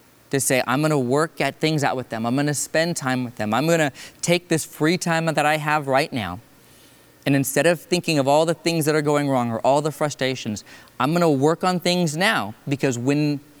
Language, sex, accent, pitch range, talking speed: English, male, American, 120-150 Hz, 225 wpm